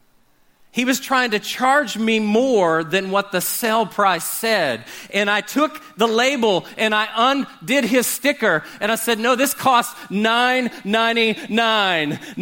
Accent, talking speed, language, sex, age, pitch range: American, 145 wpm, English, male, 40-59, 195-255 Hz